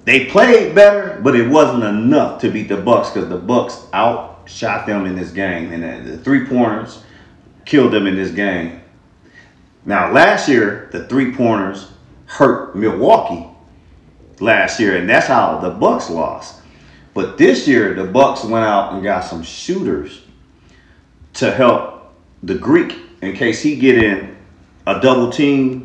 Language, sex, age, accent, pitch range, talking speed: English, male, 40-59, American, 90-115 Hz, 150 wpm